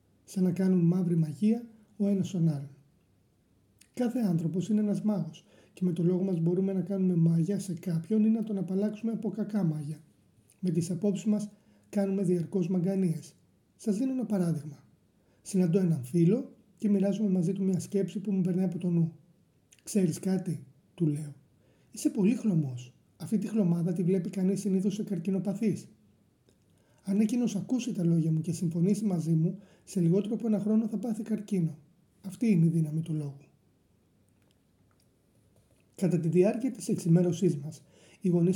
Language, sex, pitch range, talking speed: Greek, male, 160-200 Hz, 165 wpm